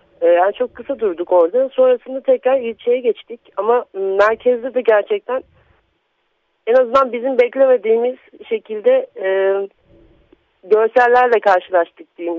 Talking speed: 105 wpm